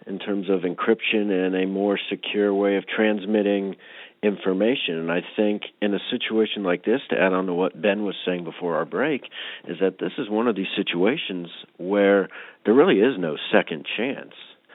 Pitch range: 90-105 Hz